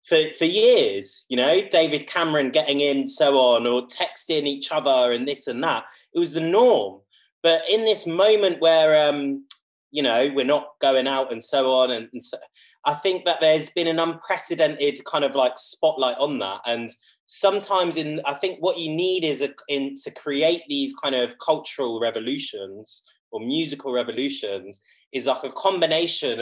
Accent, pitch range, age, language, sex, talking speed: British, 135-175 Hz, 20-39, English, male, 175 wpm